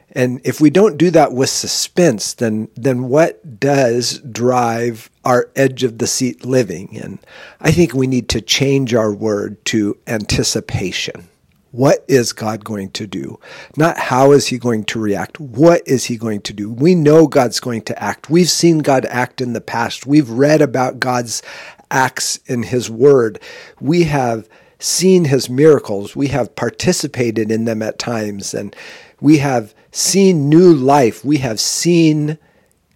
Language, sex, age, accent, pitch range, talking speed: English, male, 50-69, American, 115-150 Hz, 165 wpm